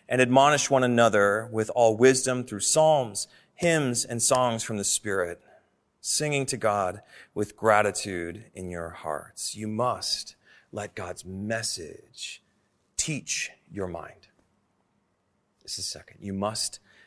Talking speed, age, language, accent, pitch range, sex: 125 wpm, 30-49, English, American, 105-135 Hz, male